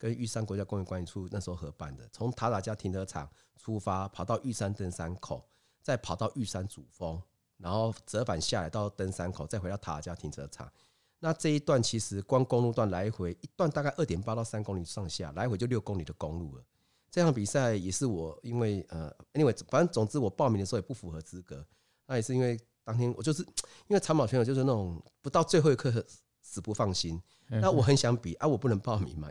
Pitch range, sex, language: 90-120 Hz, male, Chinese